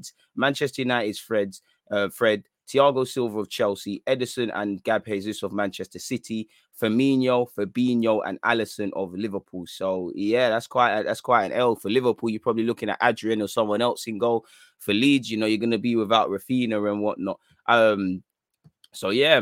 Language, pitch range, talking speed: English, 105-130 Hz, 175 wpm